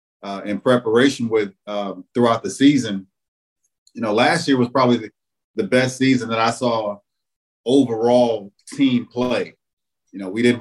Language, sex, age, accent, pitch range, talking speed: English, male, 30-49, American, 110-125 Hz, 155 wpm